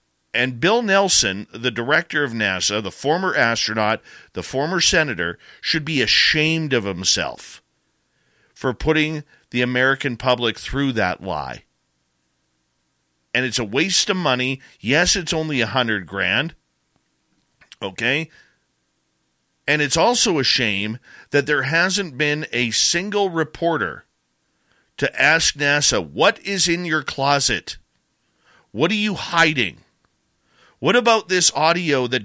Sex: male